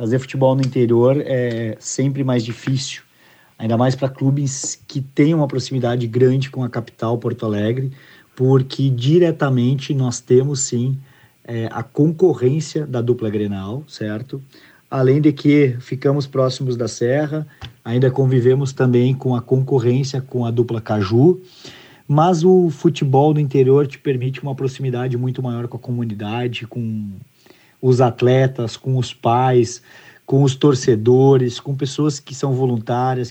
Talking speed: 140 wpm